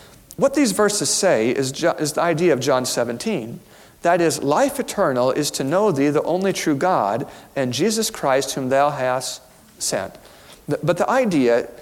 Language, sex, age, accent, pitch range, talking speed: English, male, 50-69, American, 120-175 Hz, 170 wpm